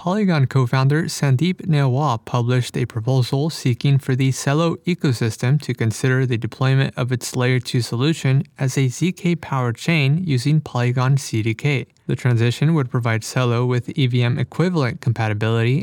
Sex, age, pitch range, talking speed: male, 20-39, 120-150 Hz, 135 wpm